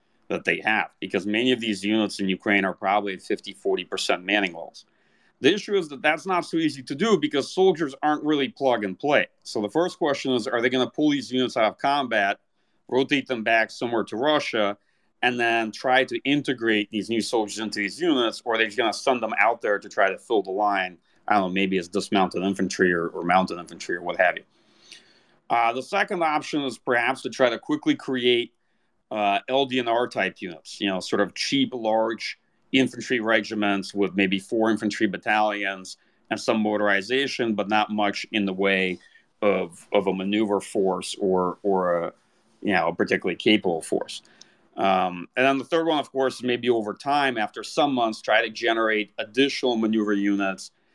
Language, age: English, 40-59